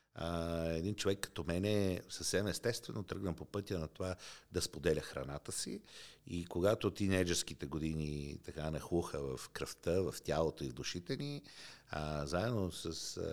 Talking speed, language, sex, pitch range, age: 160 wpm, Bulgarian, male, 70-90 Hz, 50-69